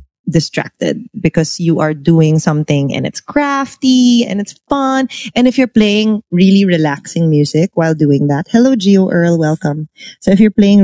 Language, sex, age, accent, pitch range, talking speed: English, female, 20-39, Filipino, 150-200 Hz, 165 wpm